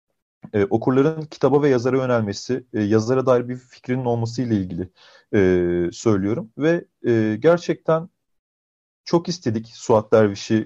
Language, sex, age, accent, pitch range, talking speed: Turkish, male, 40-59, native, 120-165 Hz, 125 wpm